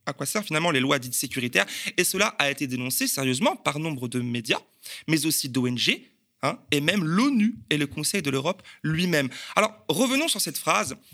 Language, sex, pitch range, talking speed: French, male, 140-225 Hz, 195 wpm